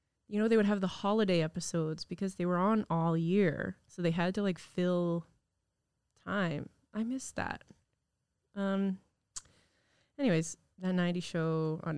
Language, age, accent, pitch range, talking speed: English, 20-39, American, 165-220 Hz, 150 wpm